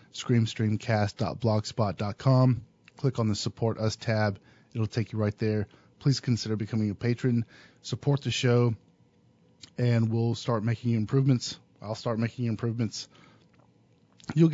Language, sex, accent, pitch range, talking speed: English, male, American, 110-140 Hz, 125 wpm